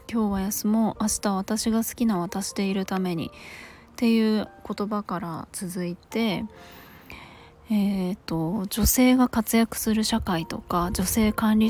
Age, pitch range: 20-39, 180-220 Hz